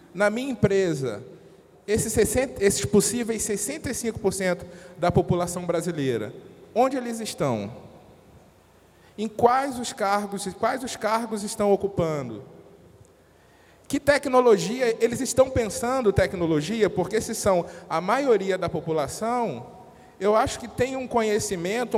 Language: English